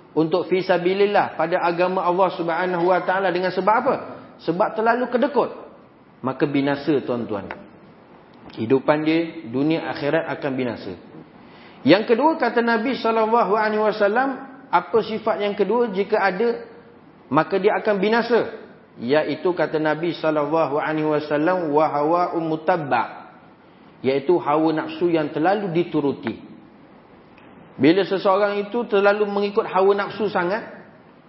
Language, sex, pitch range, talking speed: Malay, male, 160-215 Hz, 120 wpm